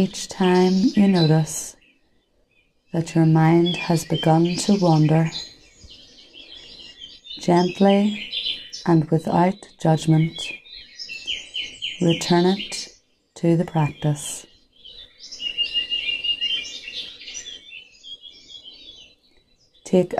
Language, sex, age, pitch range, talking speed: English, female, 30-49, 160-180 Hz, 60 wpm